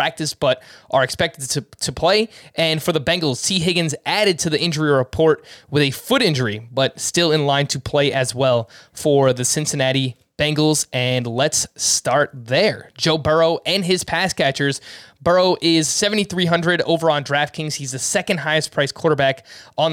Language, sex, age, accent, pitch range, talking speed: English, male, 20-39, American, 135-170 Hz, 170 wpm